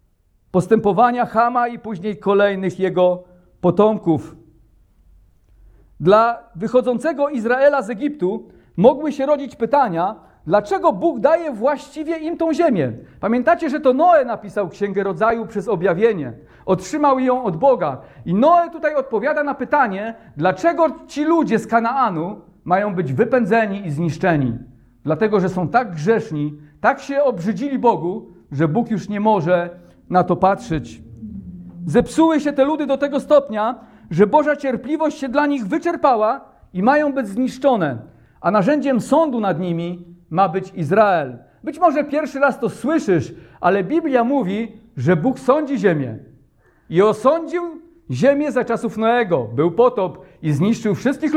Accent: native